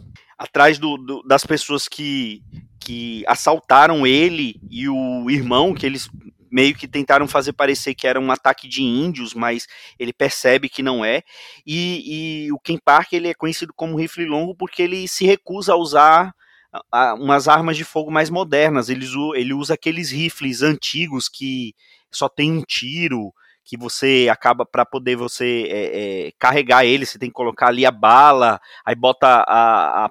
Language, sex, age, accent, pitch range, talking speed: Portuguese, male, 30-49, Brazilian, 130-175 Hz, 165 wpm